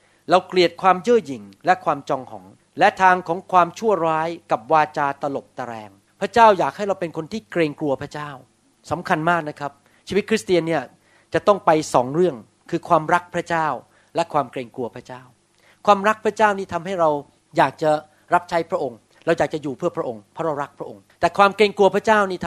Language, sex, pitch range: Thai, male, 150-205 Hz